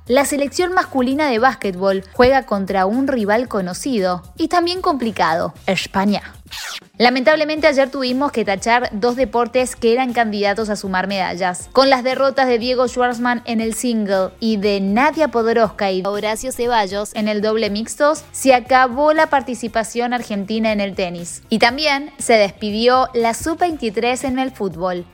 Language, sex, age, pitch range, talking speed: Spanish, female, 20-39, 210-265 Hz, 155 wpm